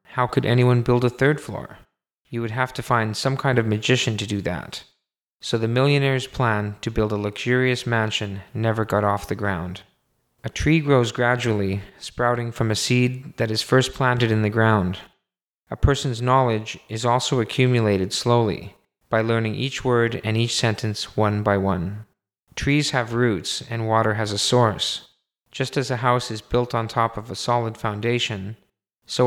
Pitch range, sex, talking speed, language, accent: 105-125 Hz, male, 175 wpm, English, American